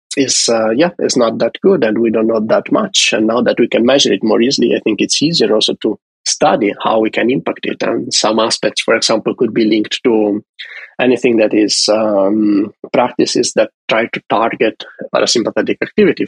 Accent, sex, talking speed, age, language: Italian, male, 200 wpm, 30-49, English